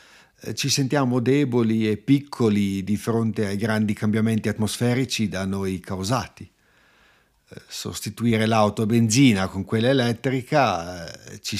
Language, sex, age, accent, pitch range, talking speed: Italian, male, 50-69, native, 105-130 Hz, 115 wpm